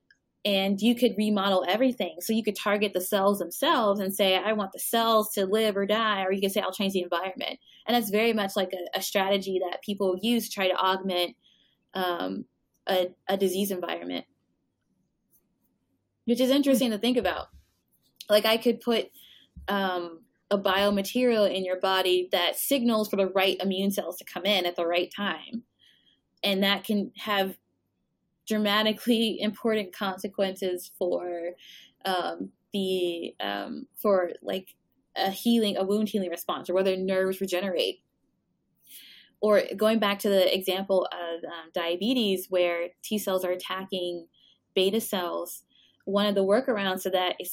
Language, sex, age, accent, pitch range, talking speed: English, female, 20-39, American, 185-215 Hz, 160 wpm